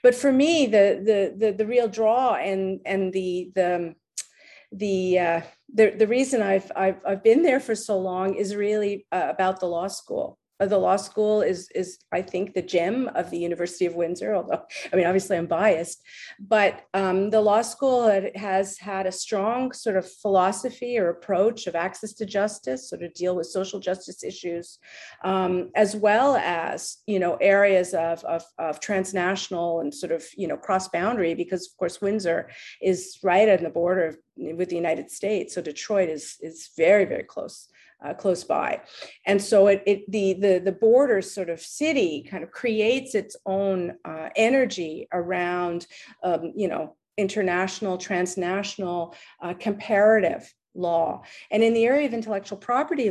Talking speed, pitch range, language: 170 wpm, 175-210 Hz, English